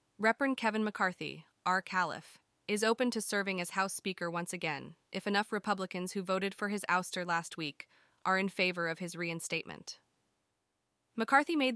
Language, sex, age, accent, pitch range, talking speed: English, female, 20-39, American, 175-220 Hz, 165 wpm